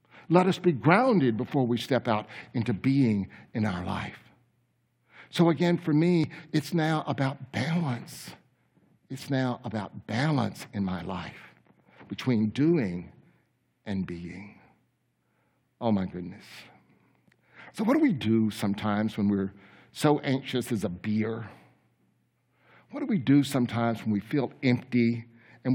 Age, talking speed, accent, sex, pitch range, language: 60-79, 135 wpm, American, male, 115-150 Hz, English